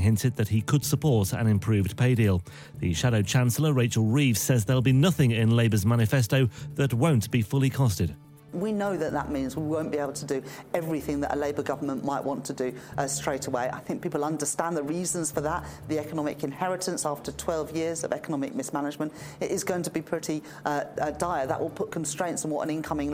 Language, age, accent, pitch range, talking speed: English, 40-59, British, 115-150 Hz, 220 wpm